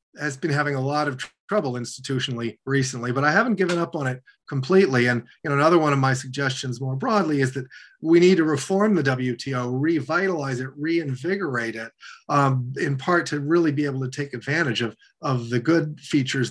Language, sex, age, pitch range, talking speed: English, male, 40-59, 130-165 Hz, 200 wpm